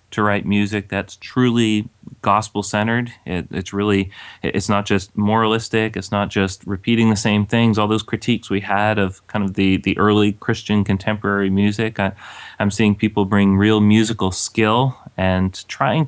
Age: 30-49